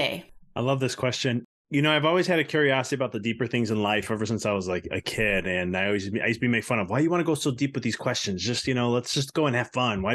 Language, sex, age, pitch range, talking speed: English, male, 20-39, 120-150 Hz, 325 wpm